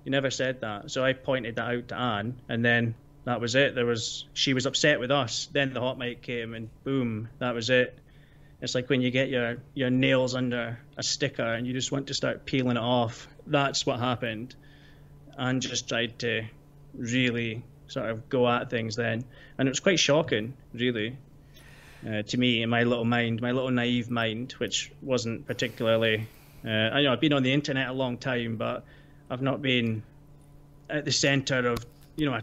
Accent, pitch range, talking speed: British, 120-140 Hz, 205 wpm